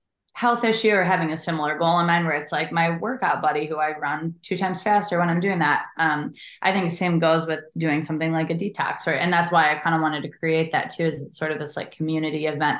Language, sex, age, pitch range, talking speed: English, female, 20-39, 150-170 Hz, 260 wpm